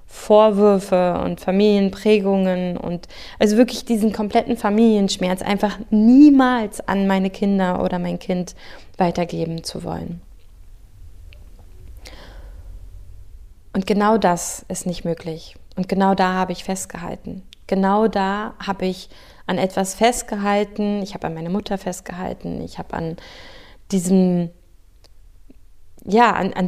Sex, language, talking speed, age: female, German, 110 wpm, 20-39